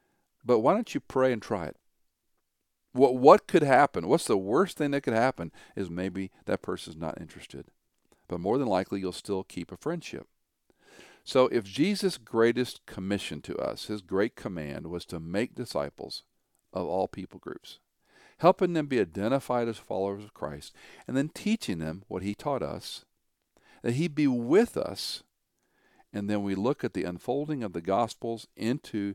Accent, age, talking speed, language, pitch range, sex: American, 50-69, 170 wpm, English, 90-120 Hz, male